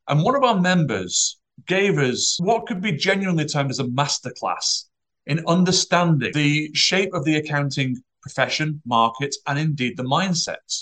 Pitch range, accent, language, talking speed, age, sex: 130-170 Hz, British, English, 155 wpm, 30-49, male